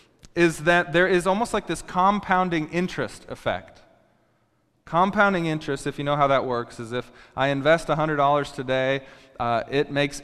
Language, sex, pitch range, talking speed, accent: English, male, 135-165 Hz, 160 wpm, American